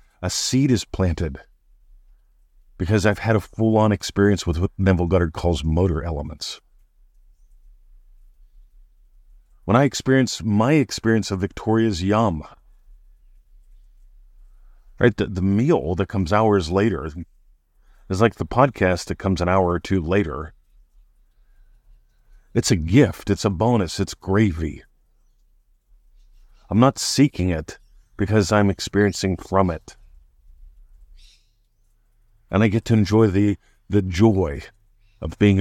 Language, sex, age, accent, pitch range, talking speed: English, male, 50-69, American, 85-105 Hz, 120 wpm